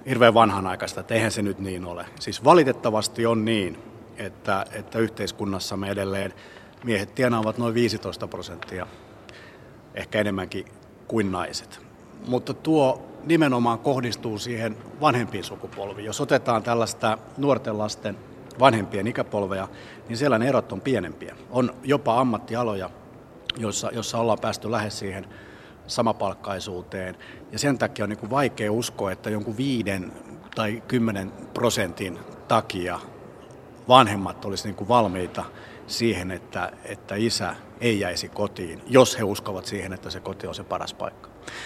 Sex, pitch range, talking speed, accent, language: male, 100-120 Hz, 130 wpm, native, Finnish